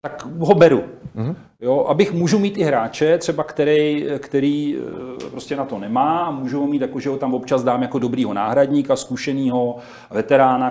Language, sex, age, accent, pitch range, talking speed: Czech, male, 40-59, native, 125-150 Hz, 170 wpm